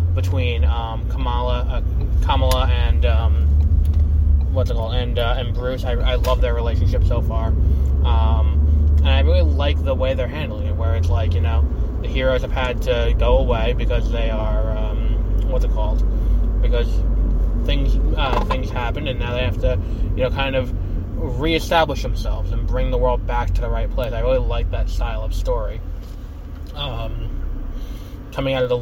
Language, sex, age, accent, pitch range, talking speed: English, male, 20-39, American, 75-95 Hz, 180 wpm